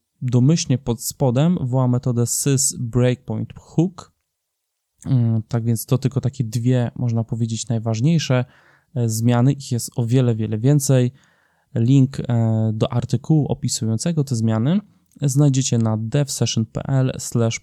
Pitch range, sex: 115-140 Hz, male